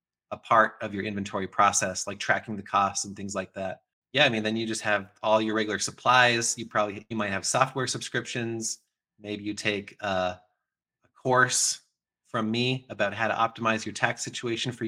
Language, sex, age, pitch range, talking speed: English, male, 30-49, 105-130 Hz, 195 wpm